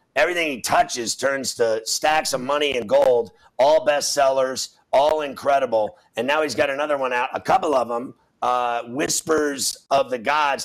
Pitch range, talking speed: 130-160 Hz, 170 wpm